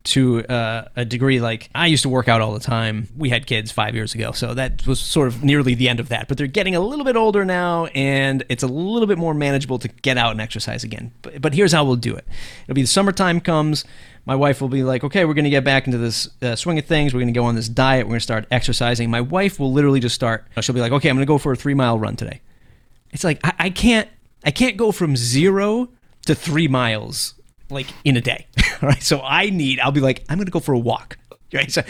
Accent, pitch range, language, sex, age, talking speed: American, 120-155 Hz, English, male, 30-49, 270 wpm